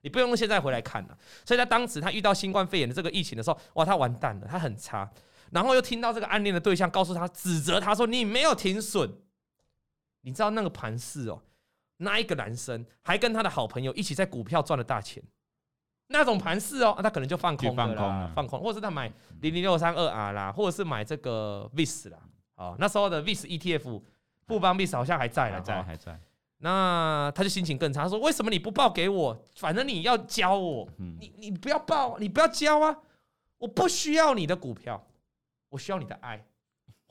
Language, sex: Chinese, male